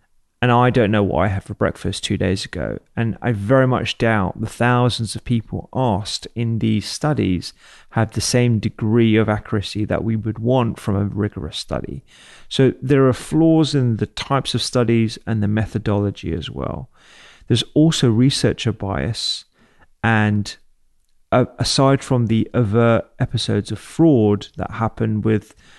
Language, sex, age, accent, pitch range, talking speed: English, male, 30-49, British, 105-125 Hz, 160 wpm